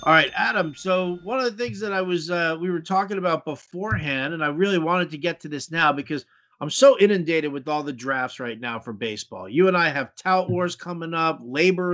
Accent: American